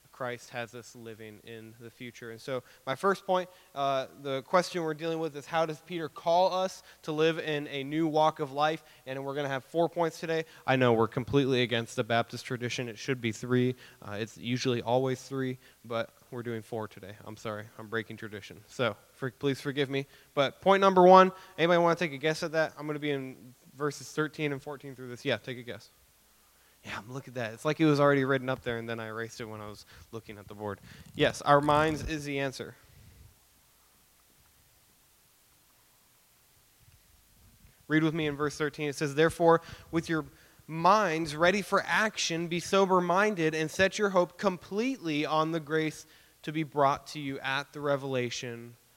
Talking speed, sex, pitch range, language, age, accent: 195 wpm, male, 120-160 Hz, English, 20-39, American